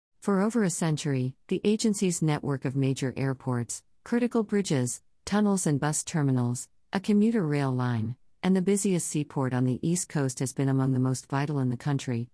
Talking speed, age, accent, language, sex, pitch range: 180 wpm, 50-69, American, English, female, 130-155 Hz